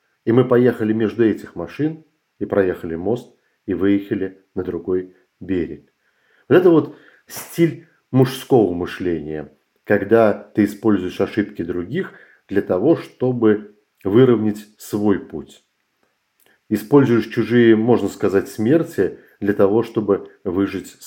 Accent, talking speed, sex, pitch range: native, 115 wpm, male, 100-120 Hz